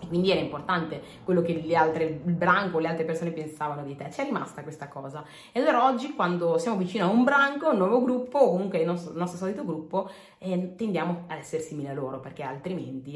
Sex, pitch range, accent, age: female, 160-230 Hz, native, 30-49